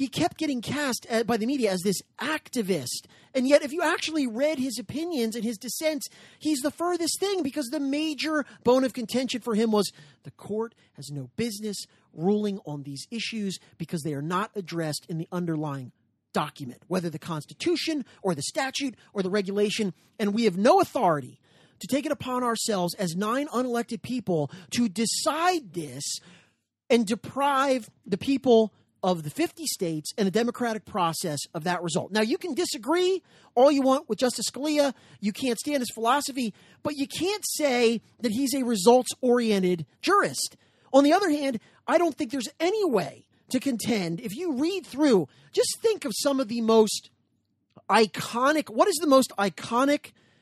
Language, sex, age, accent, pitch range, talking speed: English, male, 30-49, American, 190-280 Hz, 175 wpm